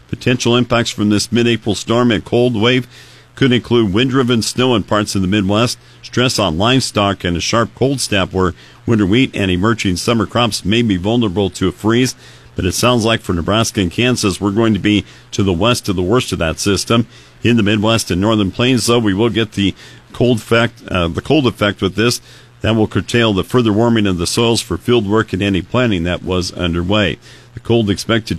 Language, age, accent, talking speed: English, 50-69, American, 210 wpm